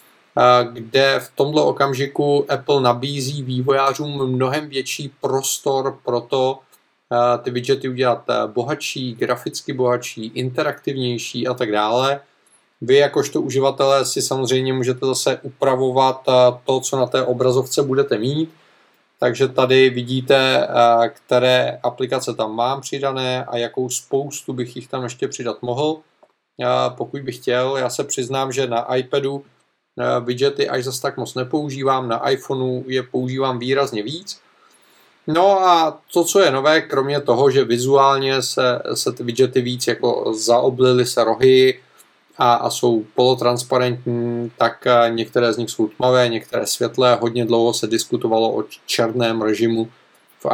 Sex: male